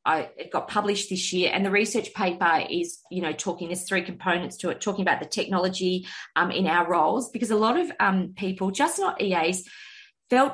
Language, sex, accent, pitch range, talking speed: English, female, Australian, 170-205 Hz, 210 wpm